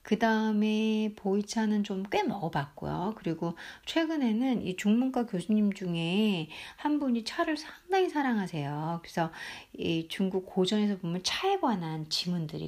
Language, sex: Korean, female